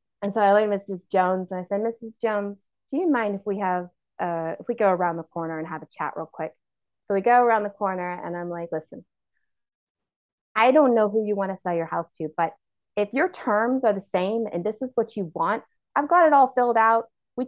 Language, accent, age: English, American, 30-49